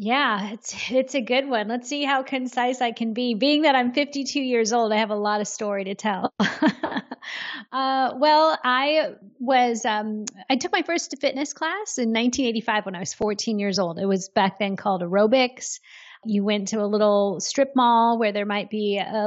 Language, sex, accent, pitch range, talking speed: English, female, American, 205-255 Hz, 210 wpm